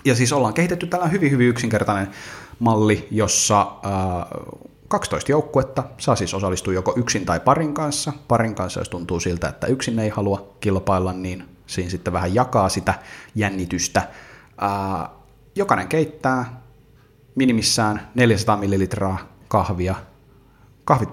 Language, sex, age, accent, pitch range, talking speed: Finnish, male, 30-49, native, 95-125 Hz, 130 wpm